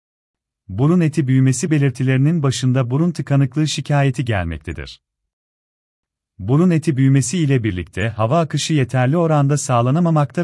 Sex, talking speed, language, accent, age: male, 110 wpm, Turkish, native, 40-59